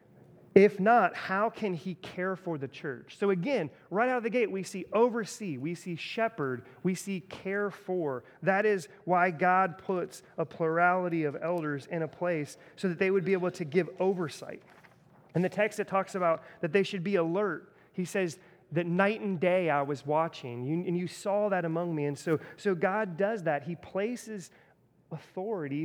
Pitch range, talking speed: 155-195 Hz, 190 wpm